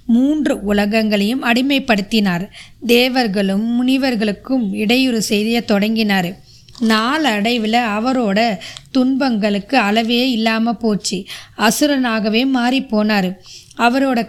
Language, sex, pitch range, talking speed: Tamil, female, 215-255 Hz, 80 wpm